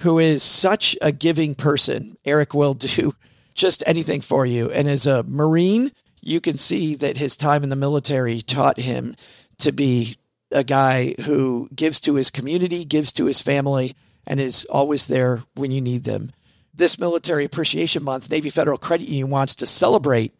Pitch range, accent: 135-160 Hz, American